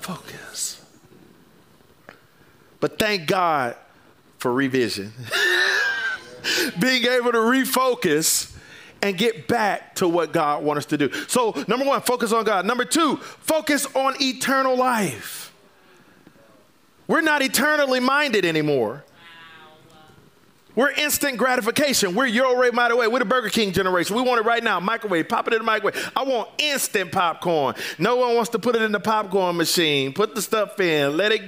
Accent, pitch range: American, 180-260 Hz